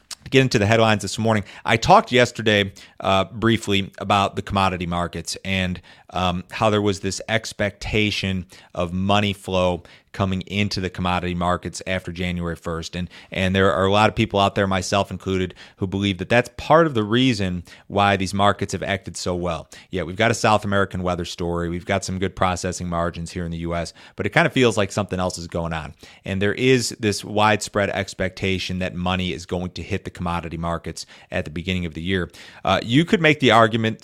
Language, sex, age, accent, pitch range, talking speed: English, male, 30-49, American, 90-105 Hz, 205 wpm